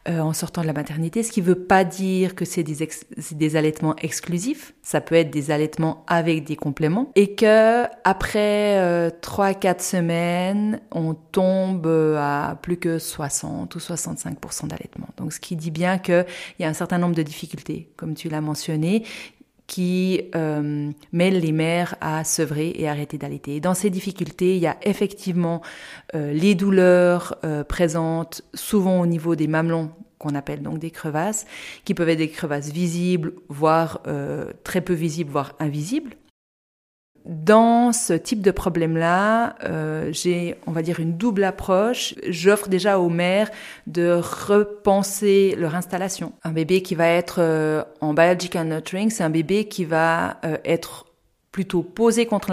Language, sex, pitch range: German, female, 160-195 Hz